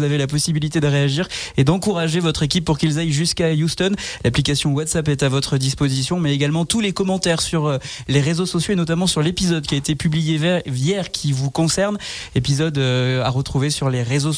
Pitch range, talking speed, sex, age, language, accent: 140-175 Hz, 195 wpm, male, 20-39, French, French